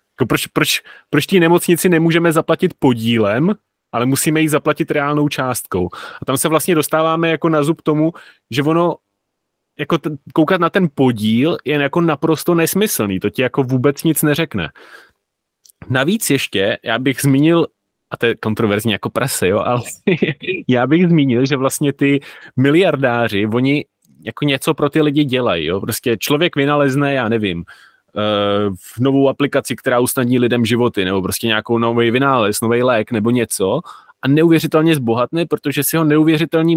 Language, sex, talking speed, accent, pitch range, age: Czech, male, 160 wpm, native, 125-160 Hz, 30-49